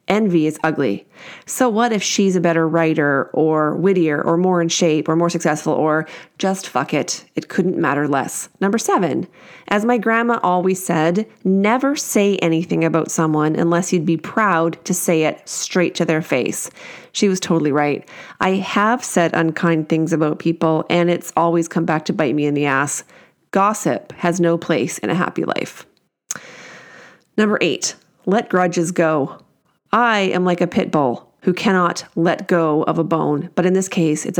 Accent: American